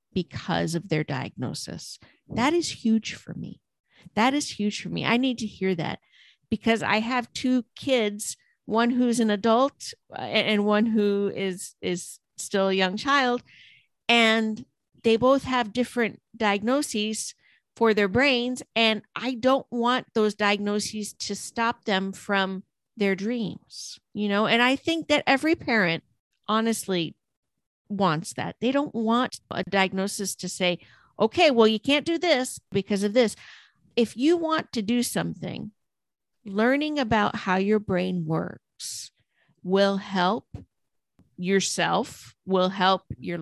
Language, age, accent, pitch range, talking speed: English, 50-69, American, 190-245 Hz, 140 wpm